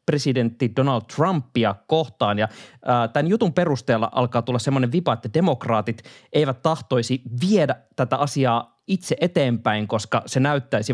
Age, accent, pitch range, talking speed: 20-39, native, 120-155 Hz, 135 wpm